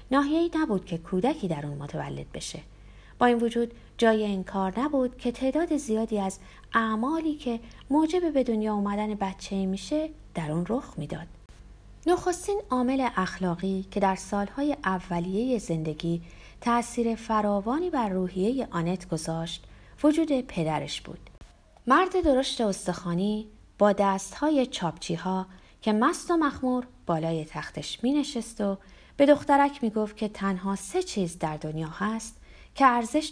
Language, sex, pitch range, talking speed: Persian, female, 180-265 Hz, 135 wpm